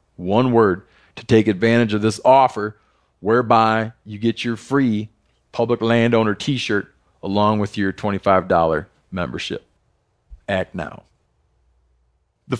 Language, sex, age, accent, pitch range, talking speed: English, male, 40-59, American, 110-135 Hz, 120 wpm